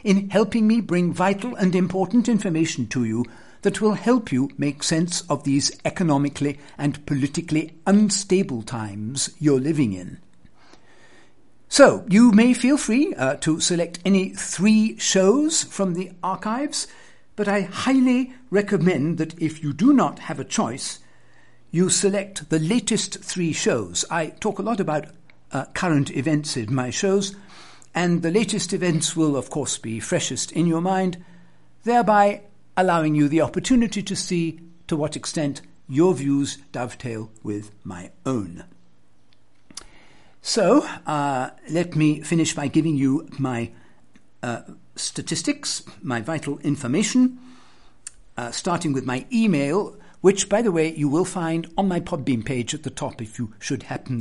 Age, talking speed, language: 60-79, 150 wpm, English